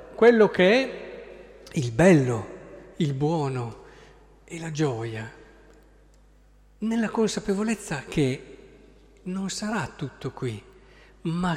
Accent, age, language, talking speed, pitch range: native, 50-69, Italian, 95 wpm, 135-185 Hz